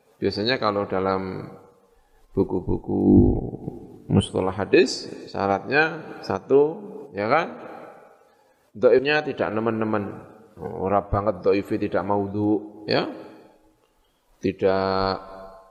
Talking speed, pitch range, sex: 75 wpm, 100-130 Hz, male